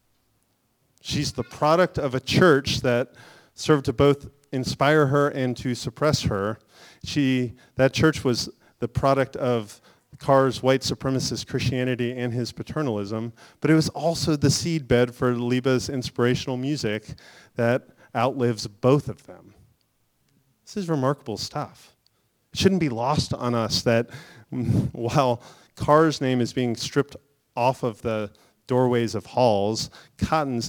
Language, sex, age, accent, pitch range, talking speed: English, male, 40-59, American, 115-145 Hz, 135 wpm